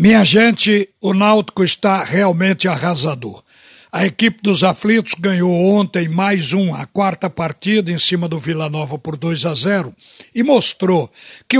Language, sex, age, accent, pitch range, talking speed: Portuguese, male, 60-79, Brazilian, 180-220 Hz, 155 wpm